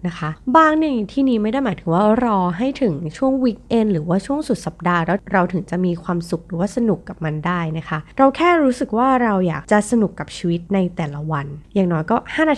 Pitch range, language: 170-250 Hz, Thai